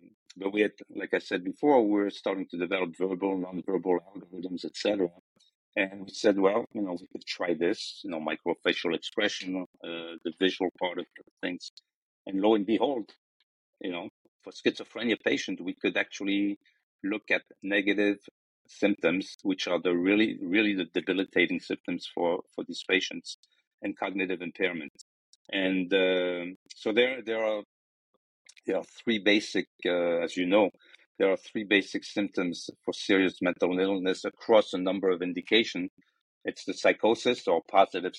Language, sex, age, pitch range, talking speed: English, male, 50-69, 85-105 Hz, 160 wpm